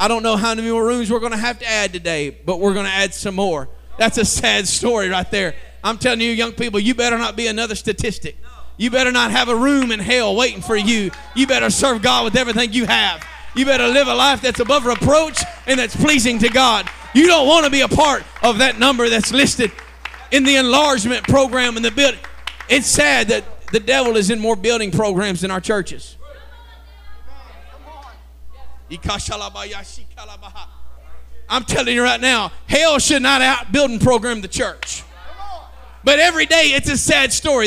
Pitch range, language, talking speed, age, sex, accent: 195-265 Hz, English, 195 wpm, 30-49, male, American